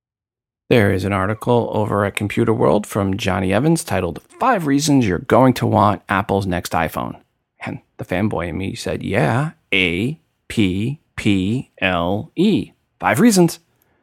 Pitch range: 90-125 Hz